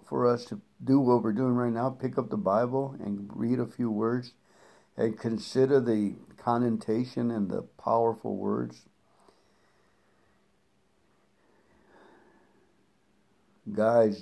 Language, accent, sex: English, American, male